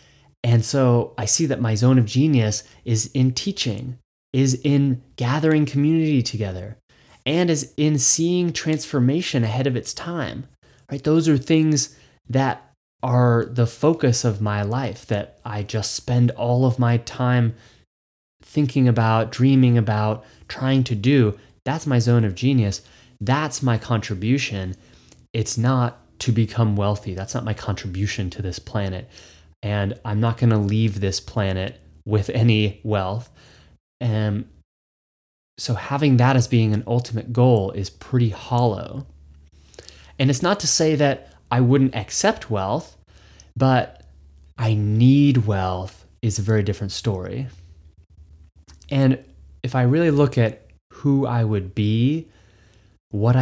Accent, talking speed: American, 140 wpm